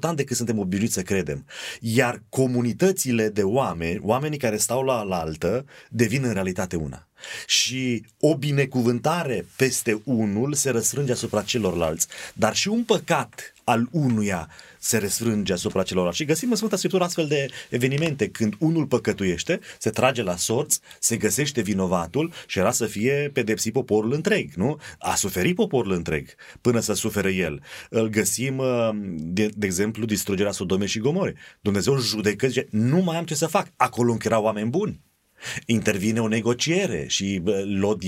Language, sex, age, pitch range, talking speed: Romanian, male, 30-49, 105-135 Hz, 160 wpm